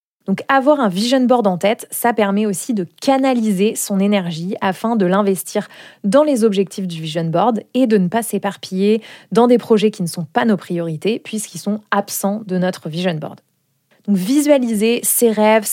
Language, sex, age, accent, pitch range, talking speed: French, female, 20-39, French, 185-230 Hz, 185 wpm